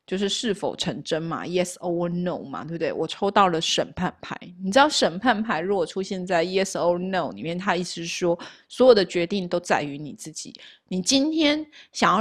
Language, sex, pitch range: Chinese, female, 180-230 Hz